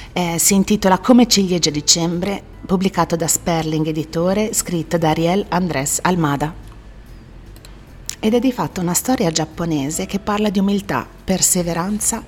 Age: 40-59